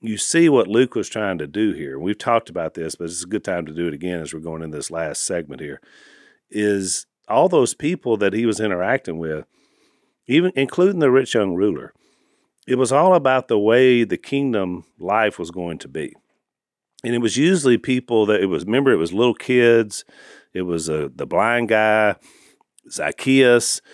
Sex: male